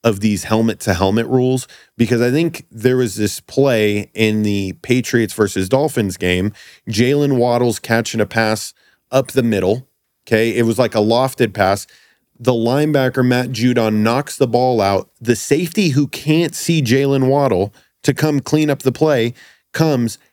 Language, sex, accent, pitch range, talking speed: English, male, American, 110-145 Hz, 160 wpm